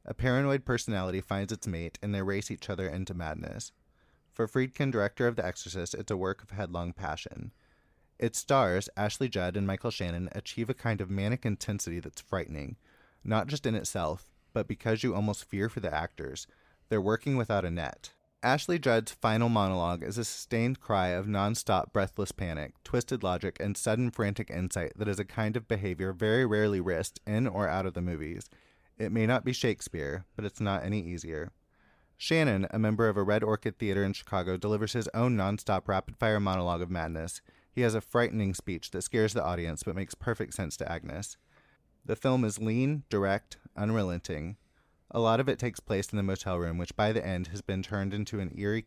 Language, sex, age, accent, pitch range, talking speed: English, male, 20-39, American, 90-110 Hz, 195 wpm